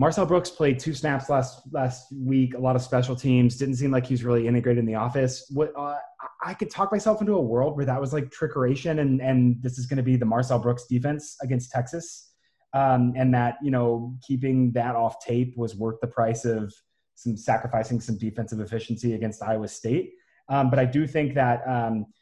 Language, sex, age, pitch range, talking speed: English, male, 20-39, 115-135 Hz, 210 wpm